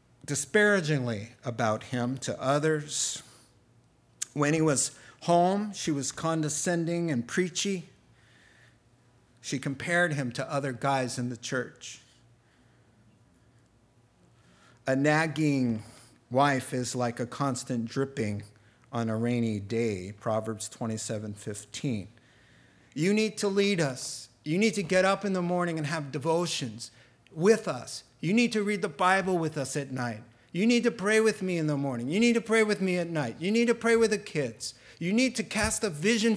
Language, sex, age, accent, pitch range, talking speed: English, male, 50-69, American, 120-180 Hz, 160 wpm